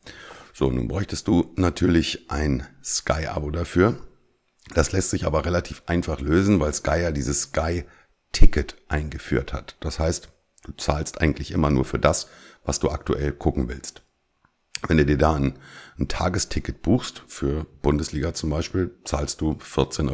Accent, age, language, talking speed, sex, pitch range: German, 50-69, German, 150 wpm, male, 70-85 Hz